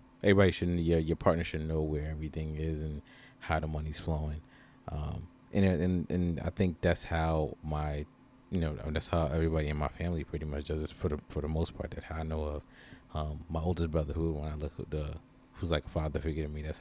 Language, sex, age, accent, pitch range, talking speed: English, male, 20-39, American, 75-85 Hz, 230 wpm